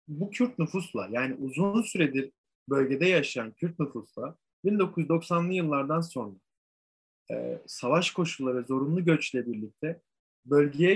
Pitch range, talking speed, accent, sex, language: 125-160 Hz, 115 wpm, native, male, Turkish